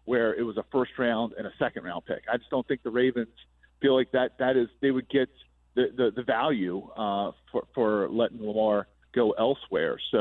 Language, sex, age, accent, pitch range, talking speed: English, male, 40-59, American, 115-150 Hz, 215 wpm